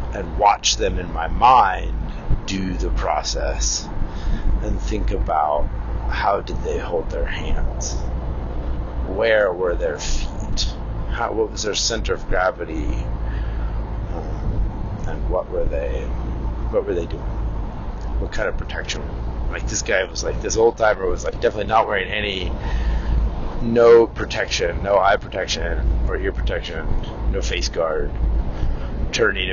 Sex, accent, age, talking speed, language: male, American, 30-49, 140 wpm, English